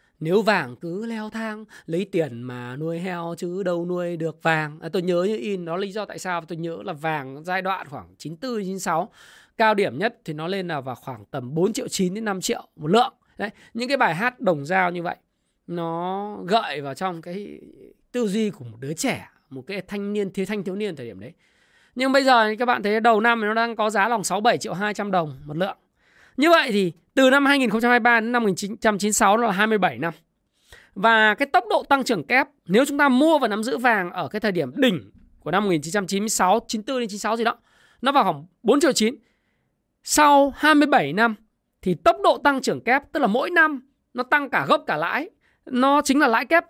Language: Vietnamese